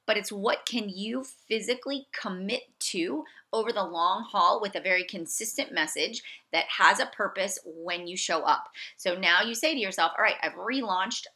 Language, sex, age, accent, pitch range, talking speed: English, female, 30-49, American, 175-245 Hz, 185 wpm